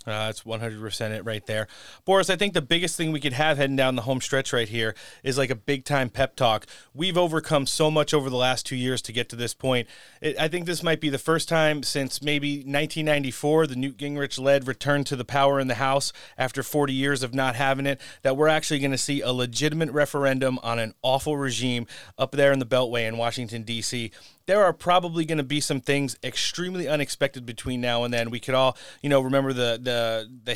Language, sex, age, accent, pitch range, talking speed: English, male, 30-49, American, 125-150 Hz, 230 wpm